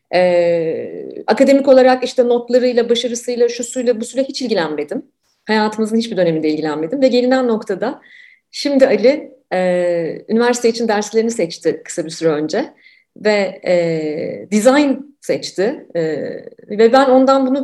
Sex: female